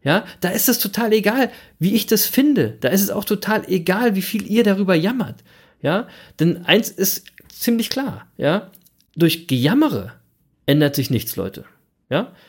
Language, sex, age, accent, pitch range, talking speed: German, male, 40-59, German, 145-195 Hz, 170 wpm